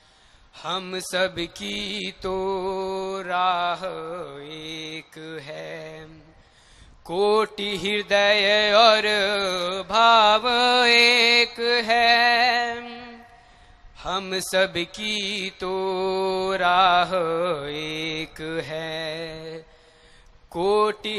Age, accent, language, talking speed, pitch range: 20-39, native, Hindi, 60 wpm, 190-290 Hz